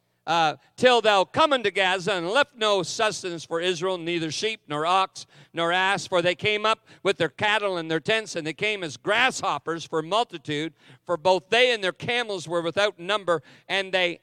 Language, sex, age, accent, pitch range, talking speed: English, male, 50-69, American, 160-220 Hz, 195 wpm